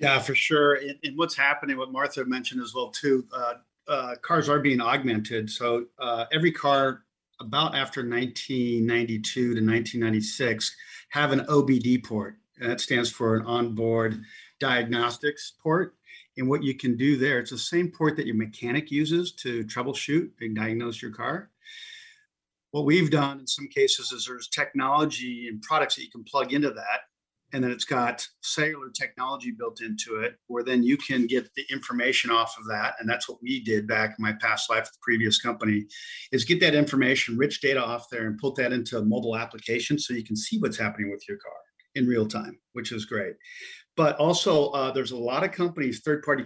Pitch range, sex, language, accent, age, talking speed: 115-150 Hz, male, English, American, 50-69, 190 wpm